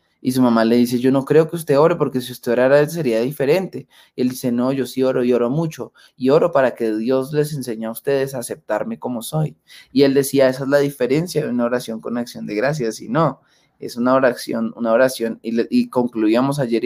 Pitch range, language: 115-140 Hz, Spanish